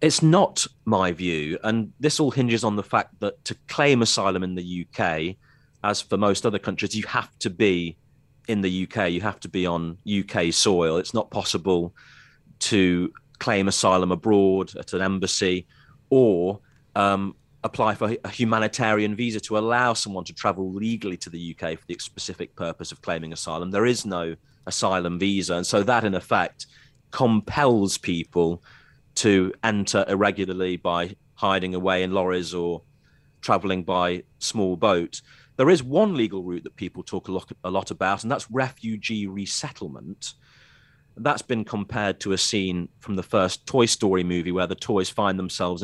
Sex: male